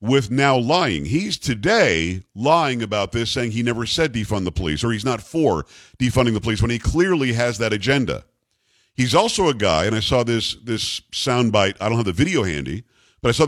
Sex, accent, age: male, American, 50-69